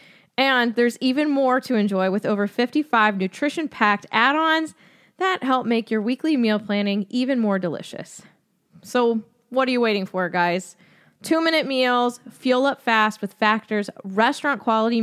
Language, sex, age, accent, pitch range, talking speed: English, female, 20-39, American, 195-260 Hz, 145 wpm